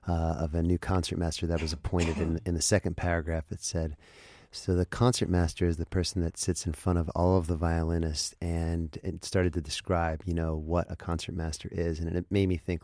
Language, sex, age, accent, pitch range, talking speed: English, male, 30-49, American, 85-90 Hz, 230 wpm